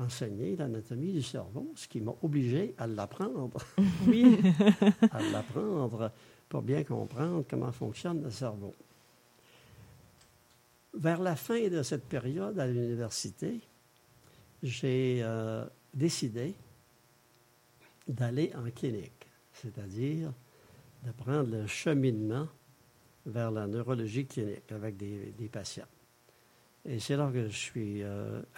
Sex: male